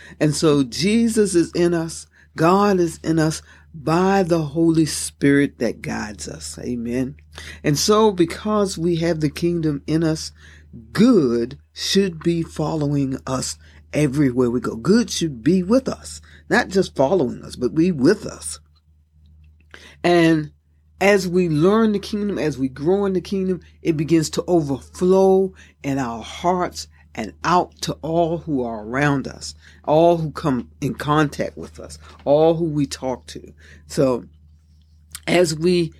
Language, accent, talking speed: English, American, 150 wpm